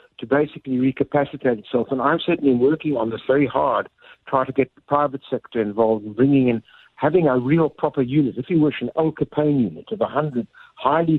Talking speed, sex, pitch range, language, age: 200 wpm, male, 125-160 Hz, English, 60-79